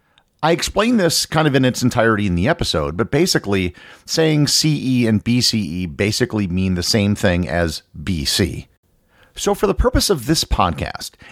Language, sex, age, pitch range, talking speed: English, male, 40-59, 90-130 Hz, 165 wpm